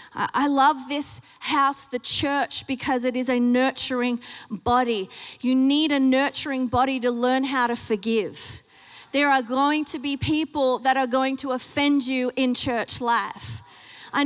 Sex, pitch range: female, 260-300 Hz